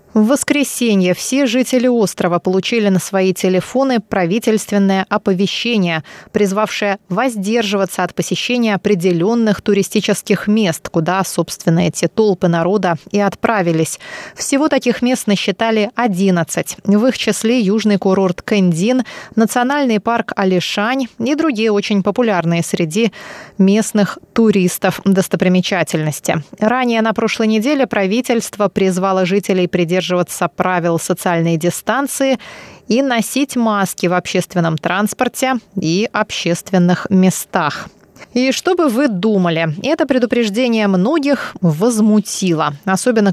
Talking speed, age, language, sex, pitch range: 105 wpm, 20-39, Russian, female, 185-235 Hz